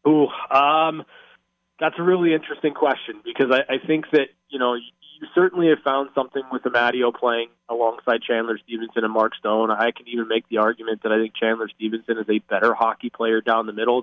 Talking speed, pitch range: 200 wpm, 115-135 Hz